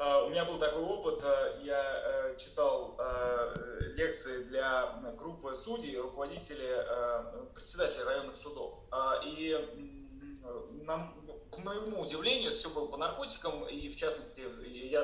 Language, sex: Russian, male